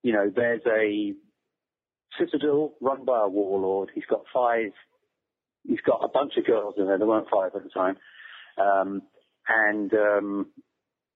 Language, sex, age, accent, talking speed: English, male, 40-59, British, 155 wpm